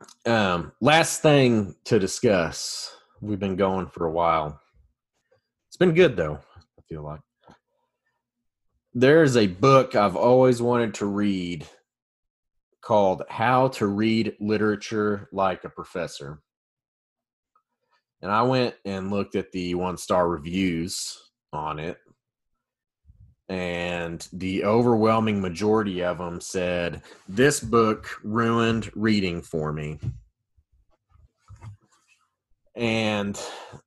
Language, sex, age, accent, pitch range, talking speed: English, male, 30-49, American, 90-115 Hz, 105 wpm